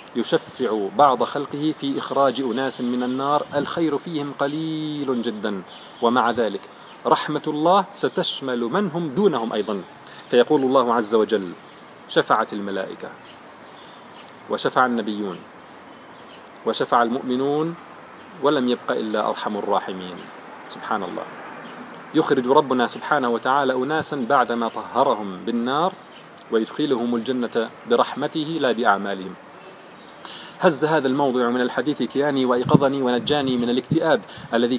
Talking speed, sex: 105 wpm, male